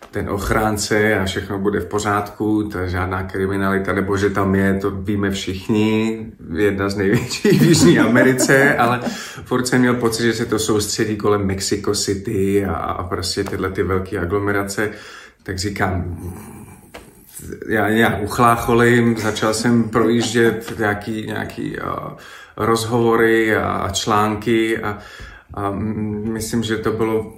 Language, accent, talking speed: Czech, native, 135 wpm